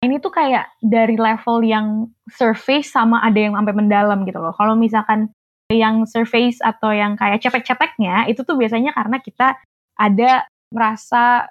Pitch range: 205-255 Hz